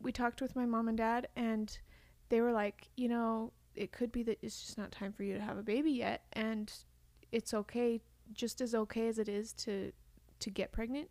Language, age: English, 30-49